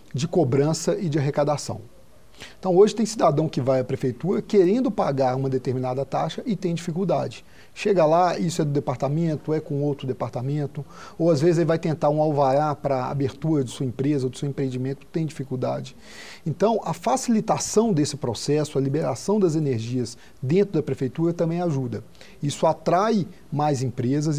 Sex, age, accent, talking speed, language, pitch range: male, 40-59, Brazilian, 165 wpm, Portuguese, 135-175 Hz